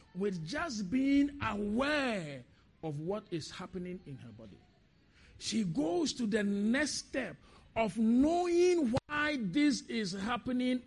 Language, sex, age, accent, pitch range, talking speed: English, male, 50-69, Nigerian, 215-295 Hz, 125 wpm